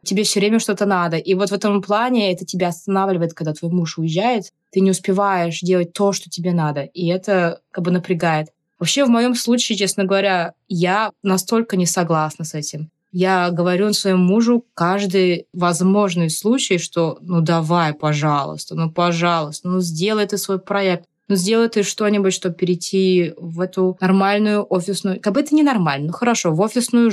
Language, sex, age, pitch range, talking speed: Russian, female, 20-39, 165-195 Hz, 175 wpm